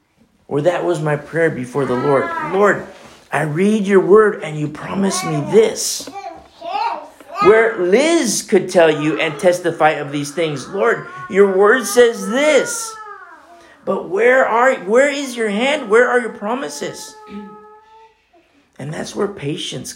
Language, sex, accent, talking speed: English, male, American, 145 wpm